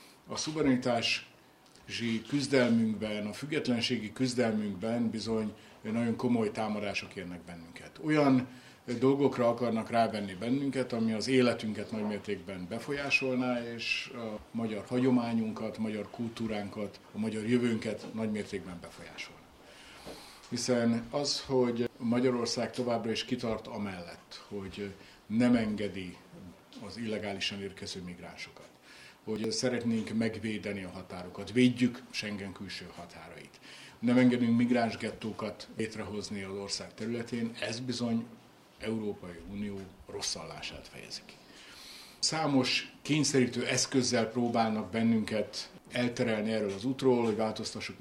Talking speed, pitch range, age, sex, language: 105 wpm, 105-120 Hz, 60-79, male, Hungarian